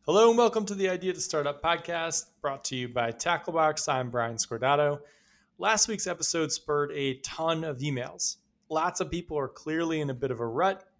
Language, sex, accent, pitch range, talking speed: English, male, American, 135-190 Hz, 200 wpm